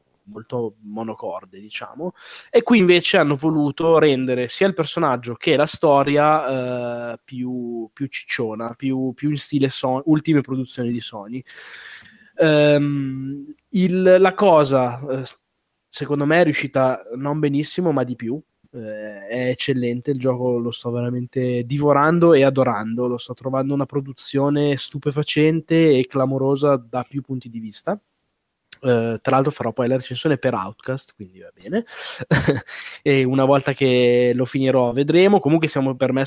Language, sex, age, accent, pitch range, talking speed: Italian, male, 20-39, native, 125-155 Hz, 135 wpm